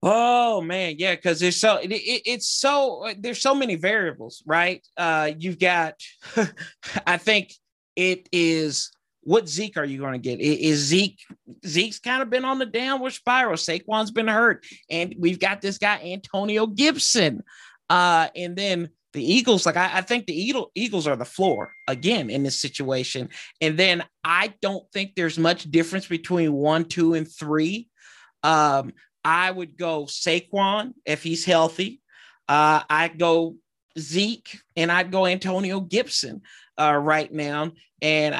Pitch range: 155-195 Hz